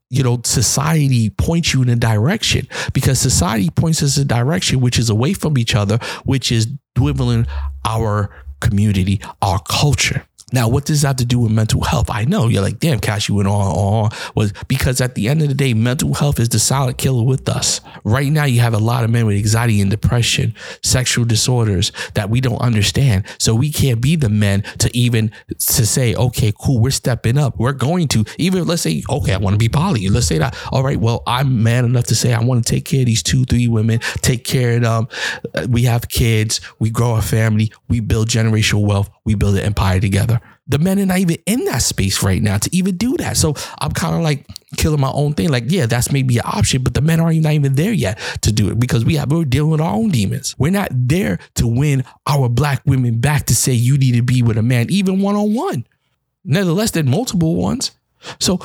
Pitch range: 110-145 Hz